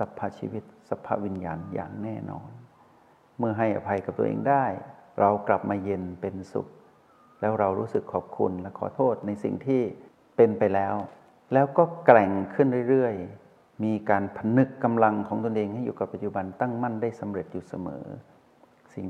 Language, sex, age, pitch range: Thai, male, 60-79, 95-115 Hz